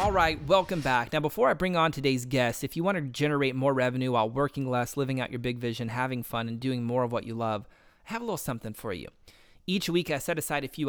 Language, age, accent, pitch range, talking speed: English, 30-49, American, 120-145 Hz, 270 wpm